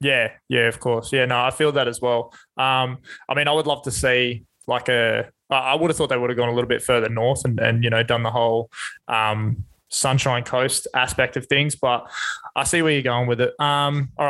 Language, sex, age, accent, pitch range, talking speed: English, male, 20-39, Australian, 125-145 Hz, 240 wpm